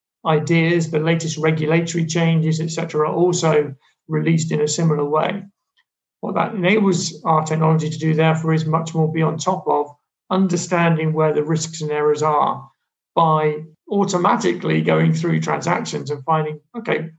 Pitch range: 155-175 Hz